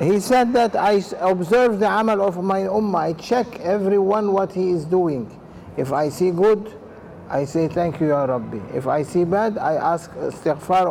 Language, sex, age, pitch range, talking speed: English, male, 60-79, 175-220 Hz, 185 wpm